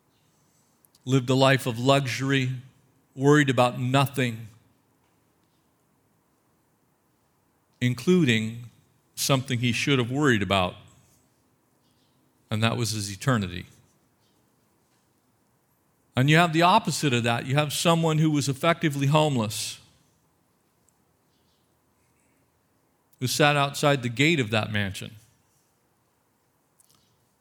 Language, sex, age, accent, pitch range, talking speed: English, male, 40-59, American, 115-135 Hz, 90 wpm